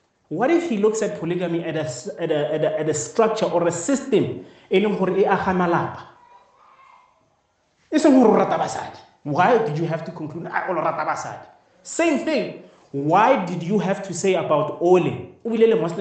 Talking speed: 130 wpm